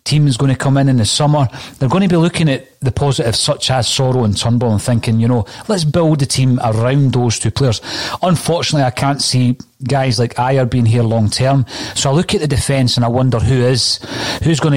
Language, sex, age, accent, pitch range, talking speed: English, male, 30-49, British, 115-140 Hz, 235 wpm